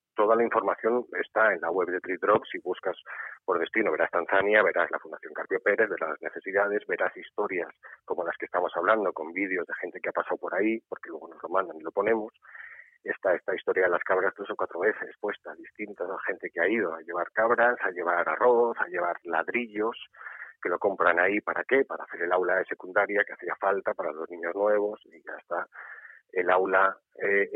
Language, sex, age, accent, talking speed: Spanish, male, 40-59, Spanish, 215 wpm